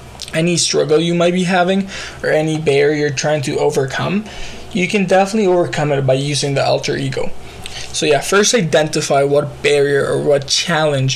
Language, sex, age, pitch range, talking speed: English, male, 20-39, 140-180 Hz, 170 wpm